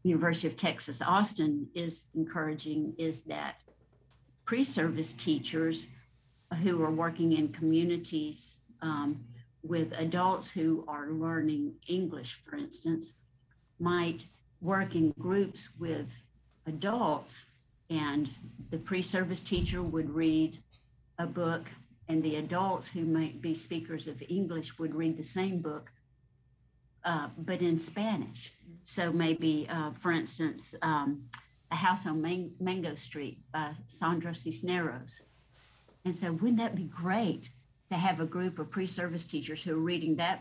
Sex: female